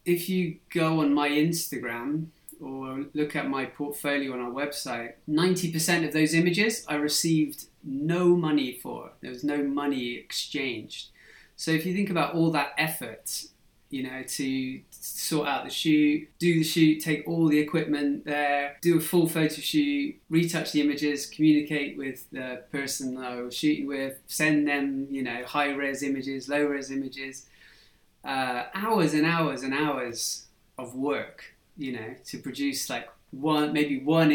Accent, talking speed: British, 160 wpm